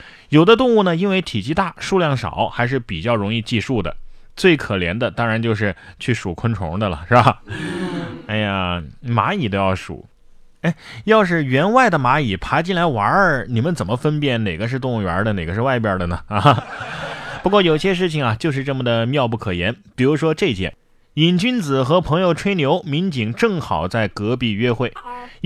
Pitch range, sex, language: 110-170 Hz, male, Chinese